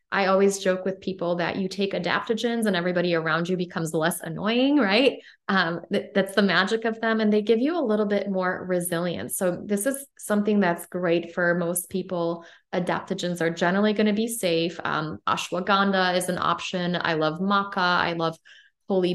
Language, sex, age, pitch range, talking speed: English, female, 20-39, 175-215 Hz, 185 wpm